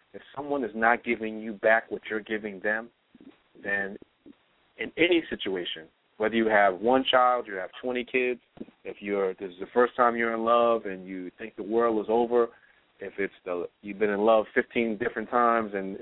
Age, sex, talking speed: 40-59, male, 195 wpm